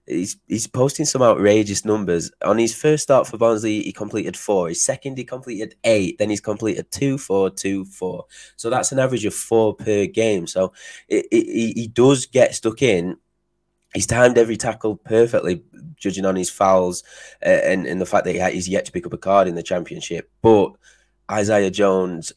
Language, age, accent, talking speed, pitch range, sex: English, 20-39, British, 190 wpm, 90-110 Hz, male